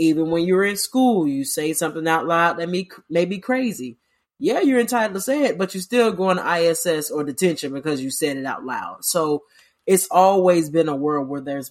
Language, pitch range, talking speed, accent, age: English, 145-175 Hz, 215 wpm, American, 30-49